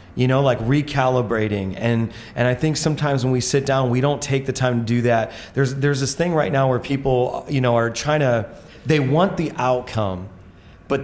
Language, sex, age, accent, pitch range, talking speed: English, male, 30-49, American, 120-140 Hz, 210 wpm